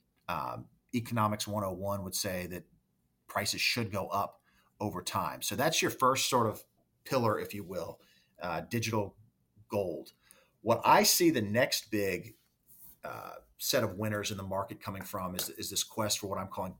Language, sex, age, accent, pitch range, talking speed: English, male, 40-59, American, 95-120 Hz, 170 wpm